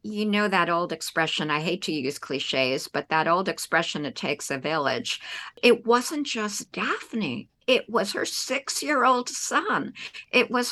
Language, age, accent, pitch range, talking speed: English, 50-69, American, 160-220 Hz, 160 wpm